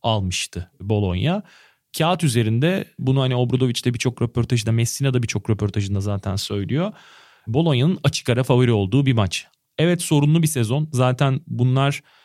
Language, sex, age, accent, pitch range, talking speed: Turkish, male, 30-49, native, 110-145 Hz, 130 wpm